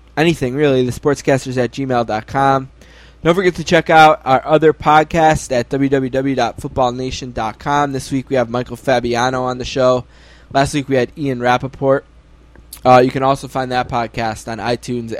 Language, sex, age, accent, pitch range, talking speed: English, male, 10-29, American, 120-140 Hz, 160 wpm